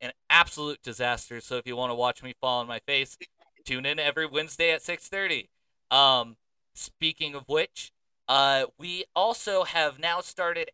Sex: male